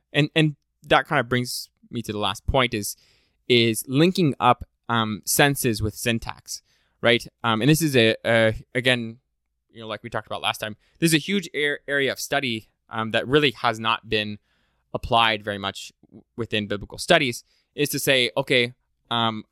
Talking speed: 180 wpm